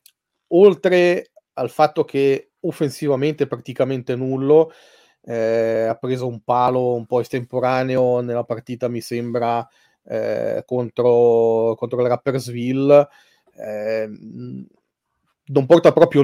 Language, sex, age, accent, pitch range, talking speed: Italian, male, 30-49, native, 120-150 Hz, 105 wpm